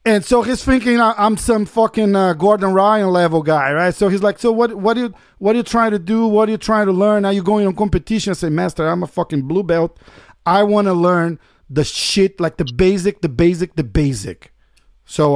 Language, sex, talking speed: Portuguese, male, 235 wpm